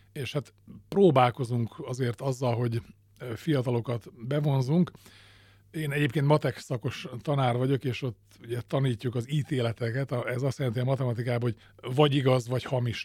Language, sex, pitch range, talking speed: Hungarian, male, 115-135 Hz, 140 wpm